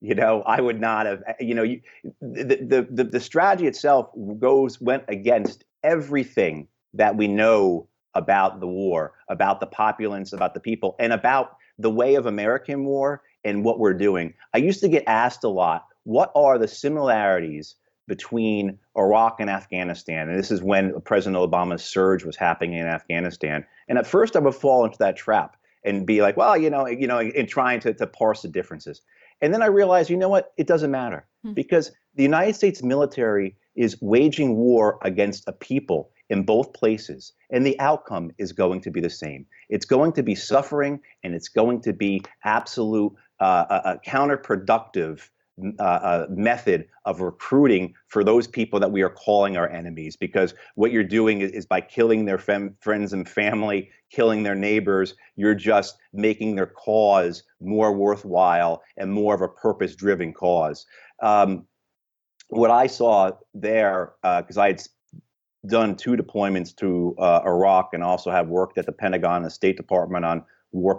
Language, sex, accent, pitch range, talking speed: English, male, American, 95-120 Hz, 175 wpm